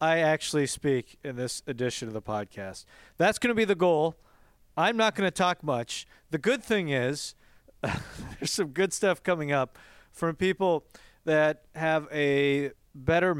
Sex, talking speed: male, 165 wpm